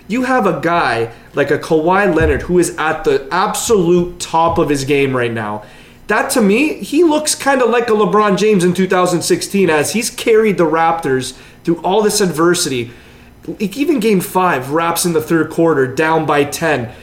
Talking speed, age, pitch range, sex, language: 185 wpm, 30-49, 135-180 Hz, male, English